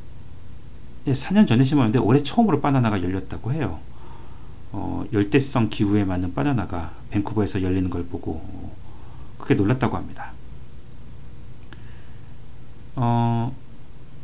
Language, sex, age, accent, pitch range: Korean, male, 40-59, native, 95-125 Hz